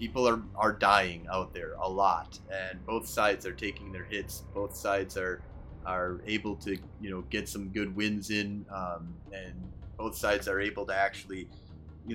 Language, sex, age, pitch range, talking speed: English, male, 30-49, 95-115 Hz, 185 wpm